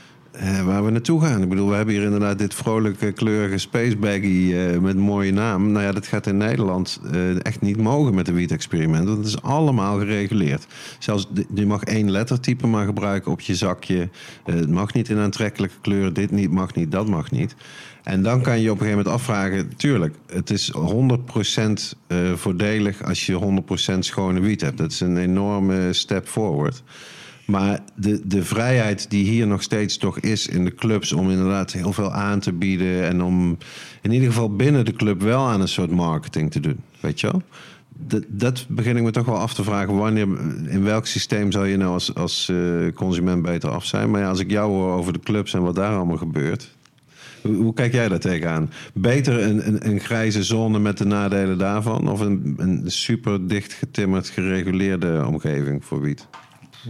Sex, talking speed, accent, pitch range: male, 200 wpm, Dutch, 95-110 Hz